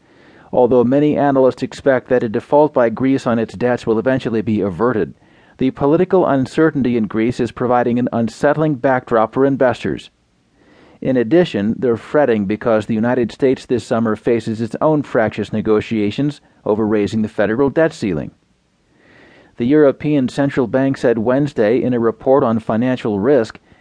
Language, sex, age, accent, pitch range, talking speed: English, male, 40-59, American, 115-140 Hz, 155 wpm